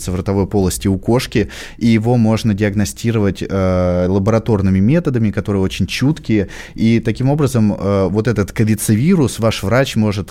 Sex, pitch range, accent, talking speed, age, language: male, 95-115 Hz, native, 145 wpm, 20-39, Russian